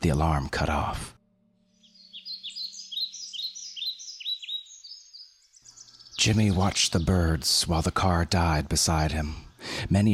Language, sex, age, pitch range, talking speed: English, male, 30-49, 80-100 Hz, 90 wpm